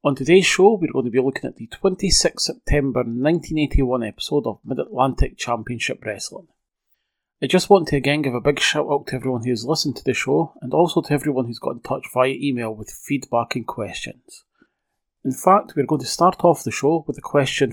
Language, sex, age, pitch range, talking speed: English, male, 30-49, 125-160 Hz, 205 wpm